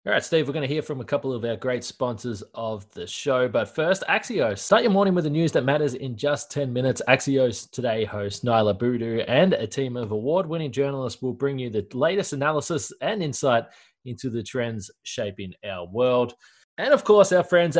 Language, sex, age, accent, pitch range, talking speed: English, male, 20-39, Australian, 125-165 Hz, 210 wpm